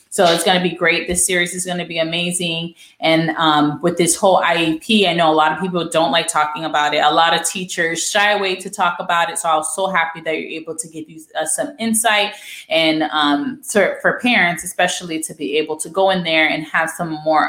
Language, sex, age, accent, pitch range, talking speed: English, female, 20-39, American, 160-190 Hz, 235 wpm